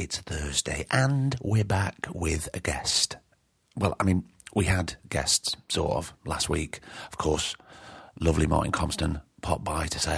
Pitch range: 85-105 Hz